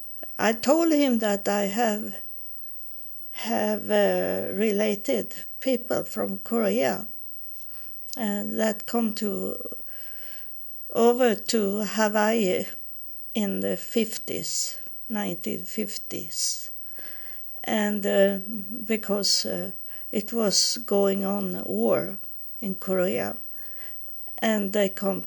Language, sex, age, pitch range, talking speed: English, female, 50-69, 190-225 Hz, 90 wpm